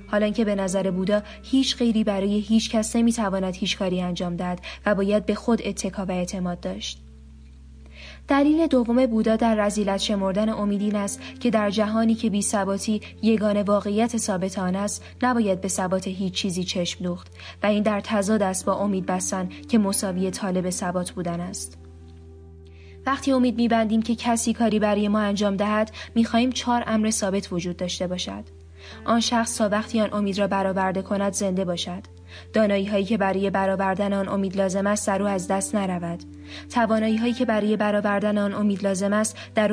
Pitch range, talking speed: 185-215 Hz, 170 wpm